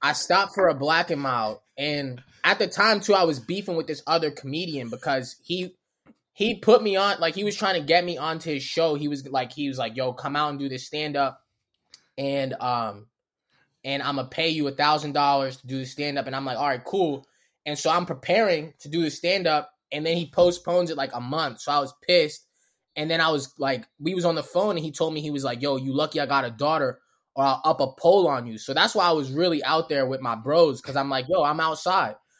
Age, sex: 20-39, male